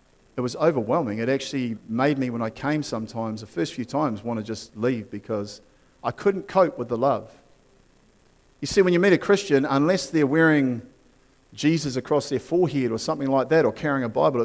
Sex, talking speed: male, 200 wpm